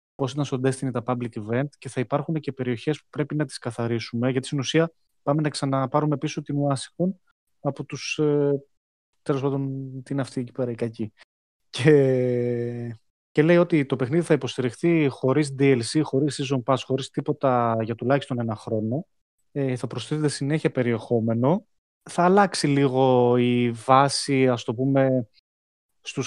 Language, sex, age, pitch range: Greek, male, 20-39, 120-145 Hz